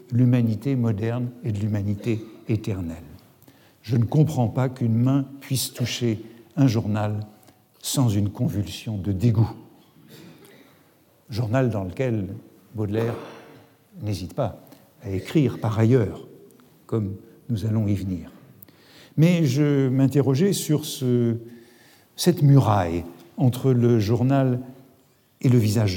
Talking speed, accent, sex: 115 wpm, French, male